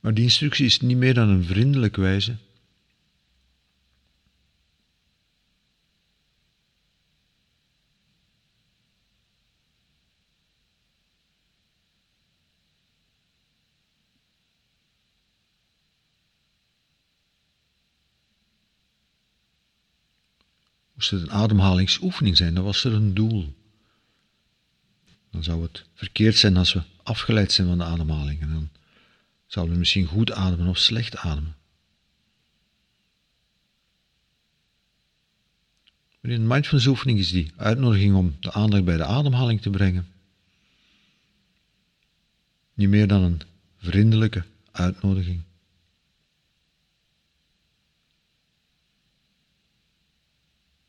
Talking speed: 75 wpm